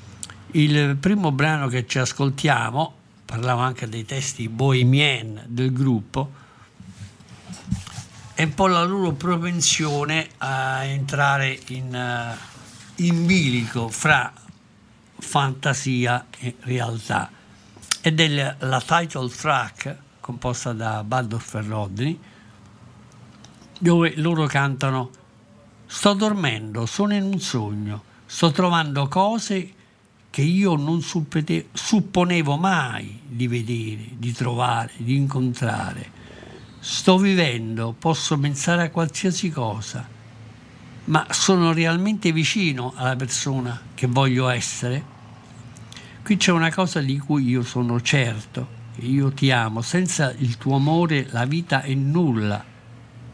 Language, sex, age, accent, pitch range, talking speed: Italian, male, 60-79, native, 115-155 Hz, 110 wpm